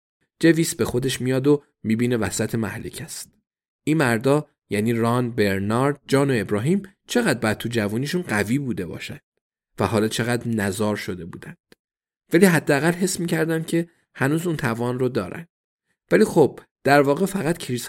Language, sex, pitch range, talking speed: Persian, male, 110-140 Hz, 155 wpm